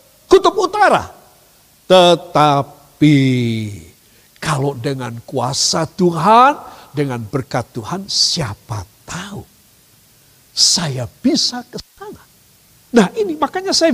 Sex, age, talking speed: male, 50-69, 80 wpm